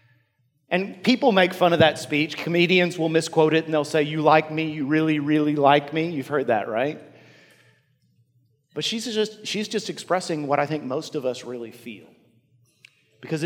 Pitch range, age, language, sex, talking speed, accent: 140-185 Hz, 50-69, English, male, 185 wpm, American